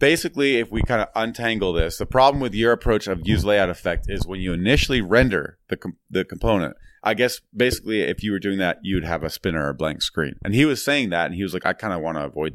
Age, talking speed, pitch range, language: 30-49, 265 wpm, 85-110 Hz, English